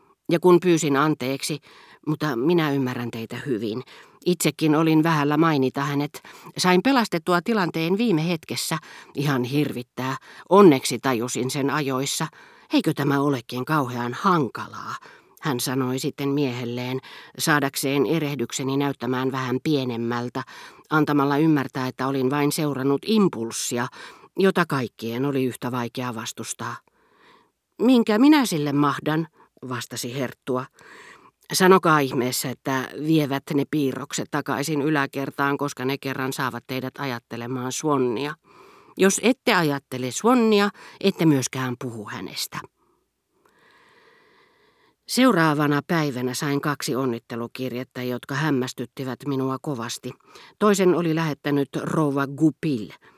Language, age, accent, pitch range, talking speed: Finnish, 40-59, native, 130-160 Hz, 105 wpm